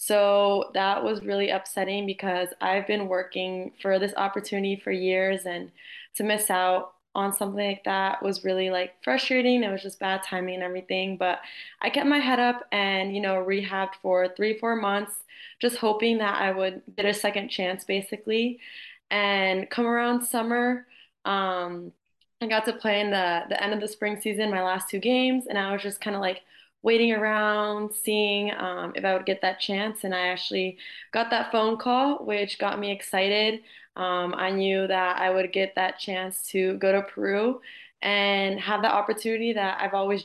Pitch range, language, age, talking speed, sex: 190-220 Hz, English, 20-39, 190 wpm, female